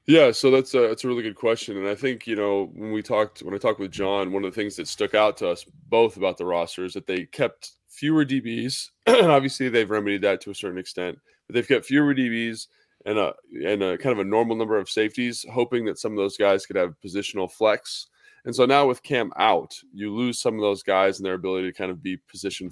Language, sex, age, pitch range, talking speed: English, male, 20-39, 95-115 Hz, 250 wpm